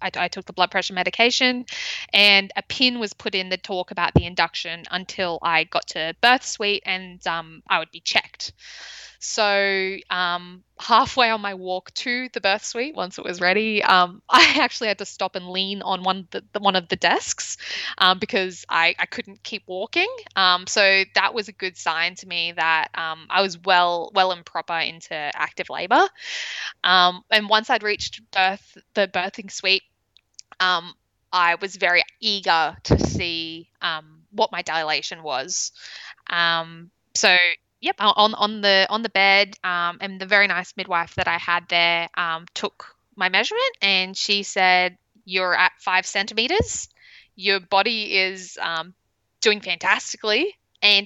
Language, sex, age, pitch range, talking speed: English, female, 10-29, 175-210 Hz, 170 wpm